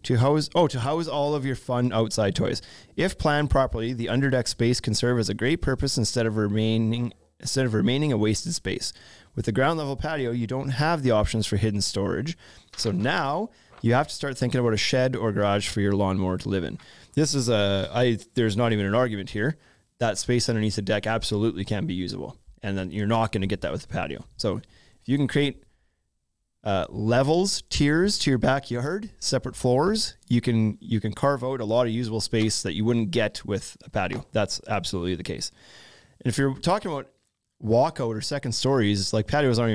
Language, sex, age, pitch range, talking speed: English, male, 30-49, 105-130 Hz, 210 wpm